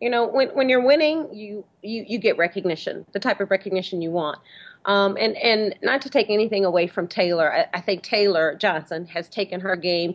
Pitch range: 175-210 Hz